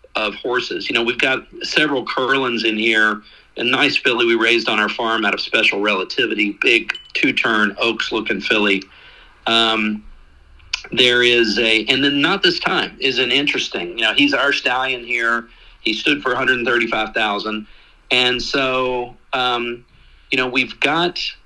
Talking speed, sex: 170 wpm, male